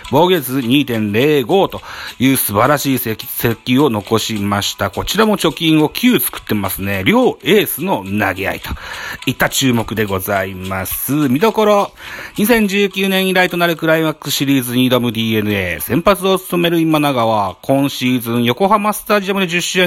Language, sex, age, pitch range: Japanese, male, 40-59, 115-185 Hz